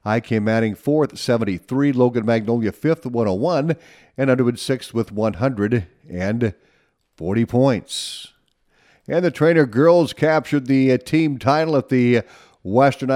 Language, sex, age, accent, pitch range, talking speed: English, male, 50-69, American, 115-140 Hz, 120 wpm